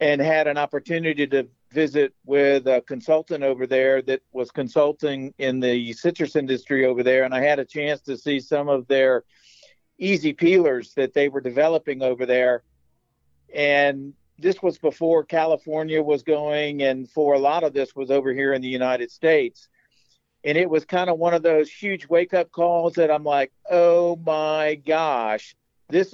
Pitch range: 135-160 Hz